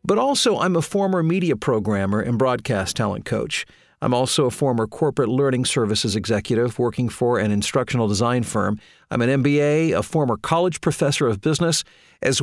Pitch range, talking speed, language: 110-155 Hz, 170 wpm, English